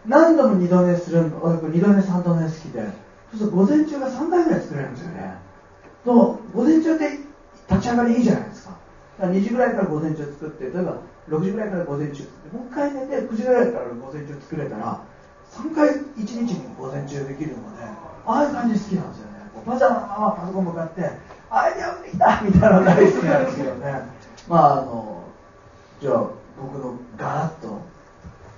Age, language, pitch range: 40-59, Japanese, 150-235 Hz